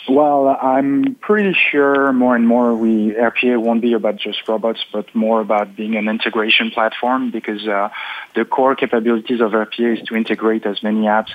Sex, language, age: male, English, 20-39